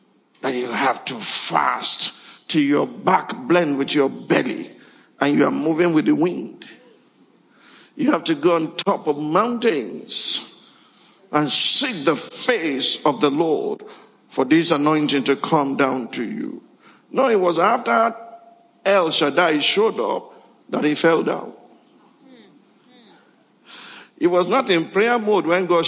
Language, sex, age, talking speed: English, male, 50-69, 145 wpm